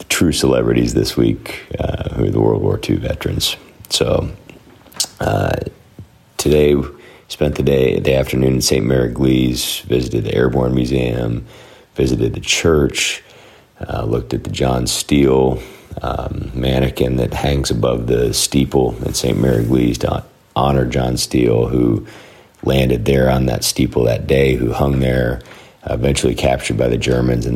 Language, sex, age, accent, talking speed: English, male, 40-59, American, 150 wpm